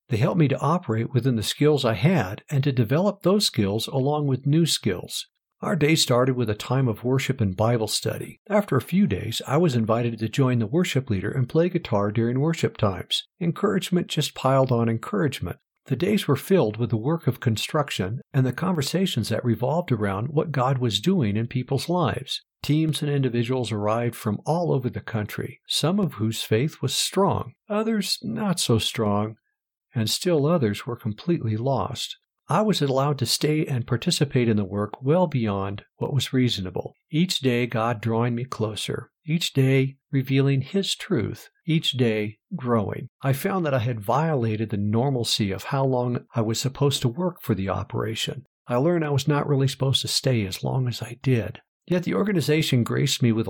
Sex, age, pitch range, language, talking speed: male, 60-79, 115-155 Hz, English, 190 wpm